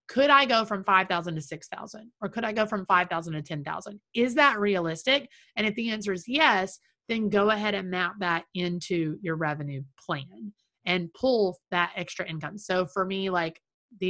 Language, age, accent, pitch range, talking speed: English, 30-49, American, 170-215 Hz, 205 wpm